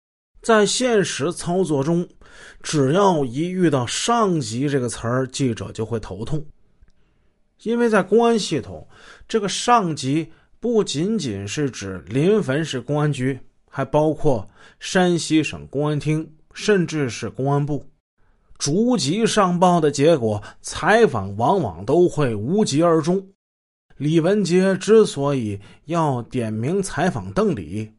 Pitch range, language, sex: 130-180 Hz, Finnish, male